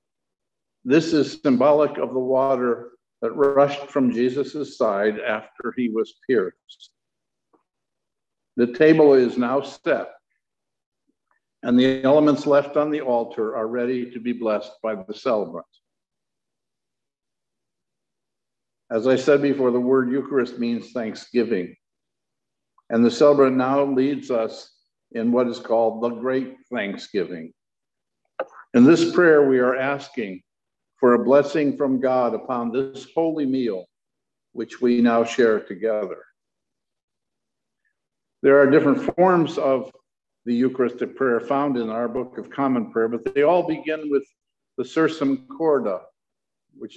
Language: English